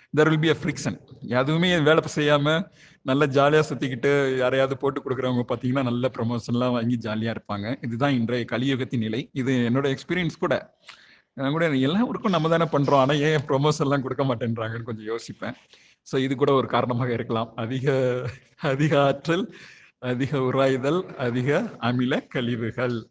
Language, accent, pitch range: Tamil, native, 125-150 Hz